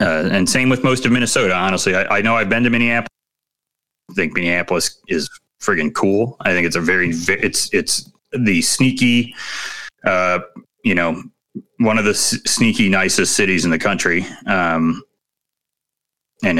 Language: English